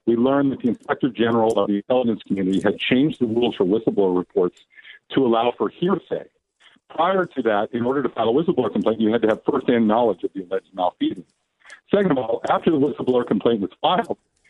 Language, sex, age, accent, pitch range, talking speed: English, male, 50-69, American, 110-140 Hz, 205 wpm